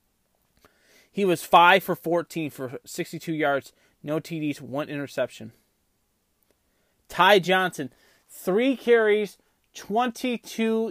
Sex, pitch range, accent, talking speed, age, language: male, 165-220 Hz, American, 95 wpm, 30-49, English